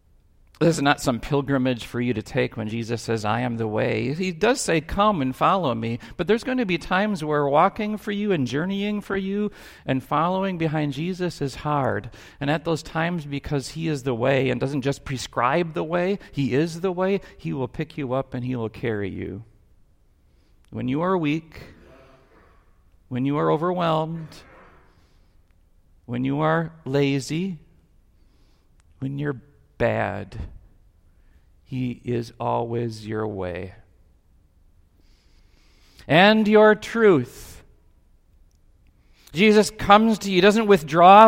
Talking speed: 150 wpm